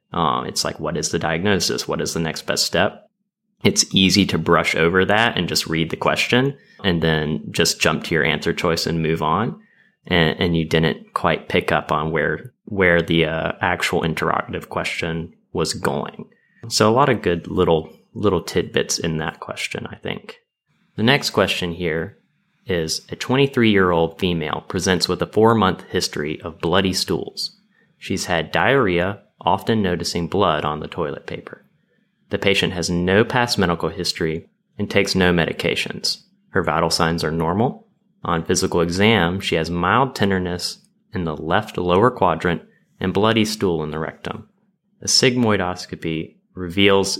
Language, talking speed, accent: English, 170 wpm, American